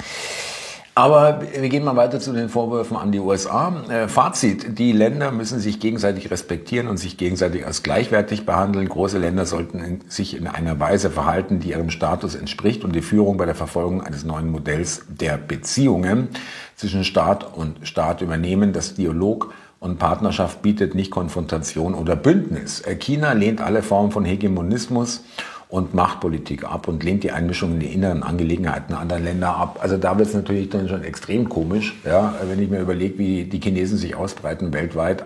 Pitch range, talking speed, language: 85-105 Hz, 170 wpm, German